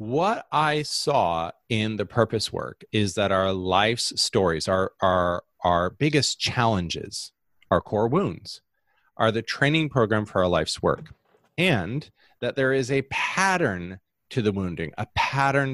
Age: 30-49